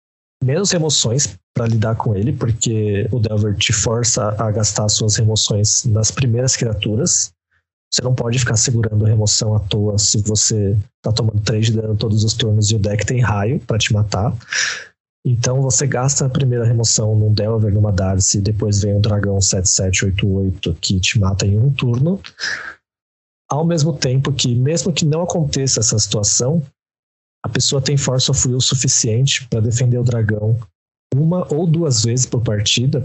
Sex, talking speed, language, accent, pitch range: male, 170 wpm, Portuguese, Brazilian, 105-135 Hz